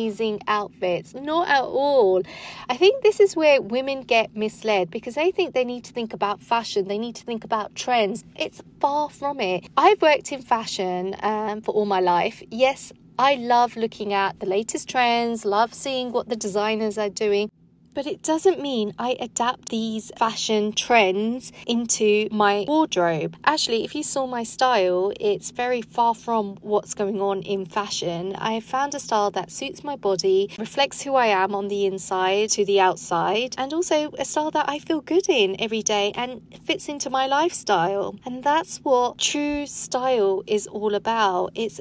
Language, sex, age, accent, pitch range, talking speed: English, female, 30-49, British, 205-280 Hz, 180 wpm